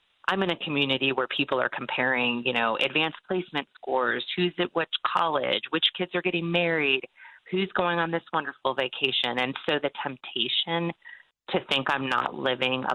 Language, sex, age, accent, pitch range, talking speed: English, female, 30-49, American, 135-185 Hz, 175 wpm